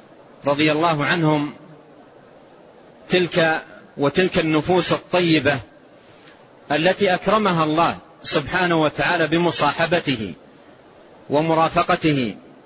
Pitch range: 155-180 Hz